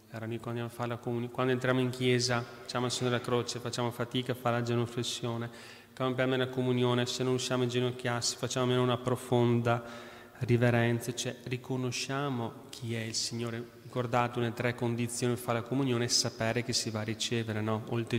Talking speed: 170 wpm